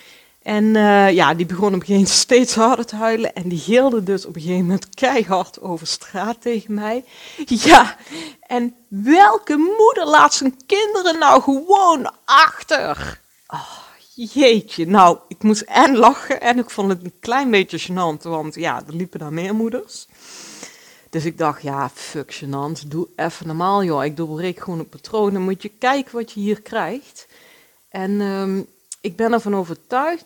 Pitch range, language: 175-235 Hz, Dutch